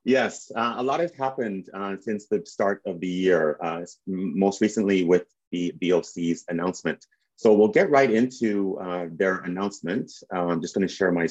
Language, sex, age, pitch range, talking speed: English, male, 30-49, 90-120 Hz, 180 wpm